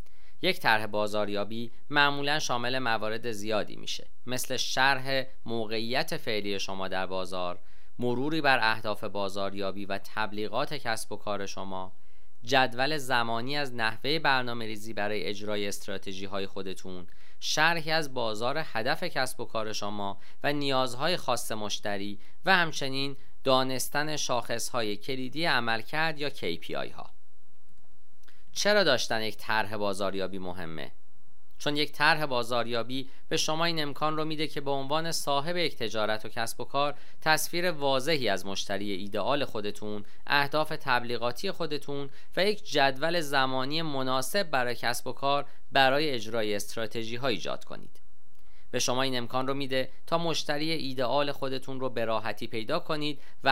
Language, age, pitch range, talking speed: Persian, 40-59, 110-150 Hz, 135 wpm